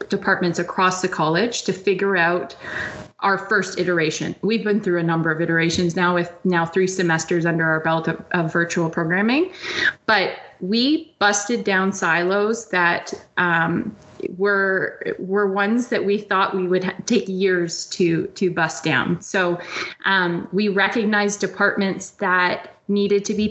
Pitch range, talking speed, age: 180-225 Hz, 155 wpm, 20-39